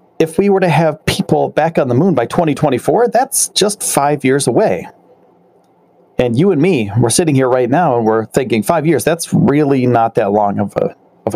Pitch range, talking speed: 120-180 Hz, 205 wpm